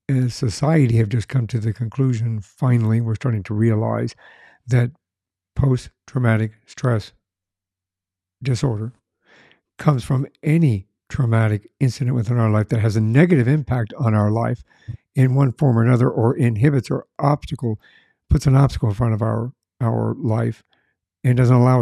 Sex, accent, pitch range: male, American, 110-135 Hz